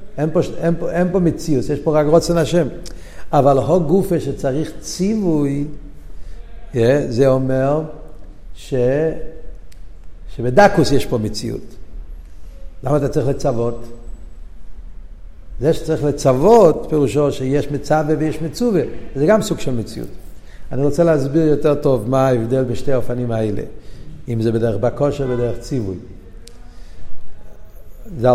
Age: 60-79